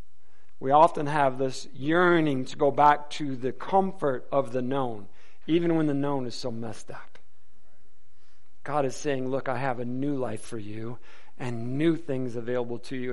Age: 50-69